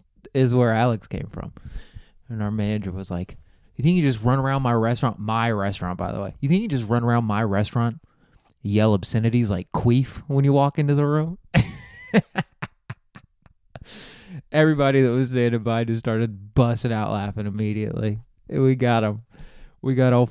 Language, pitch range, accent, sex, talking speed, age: English, 105-130 Hz, American, male, 175 wpm, 20-39